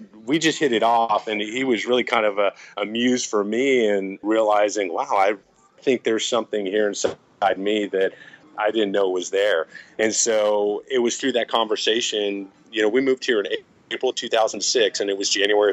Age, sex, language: 30-49, male, English